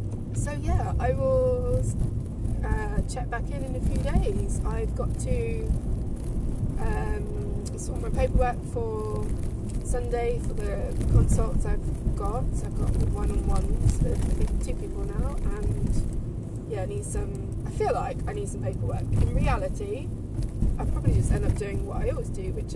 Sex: female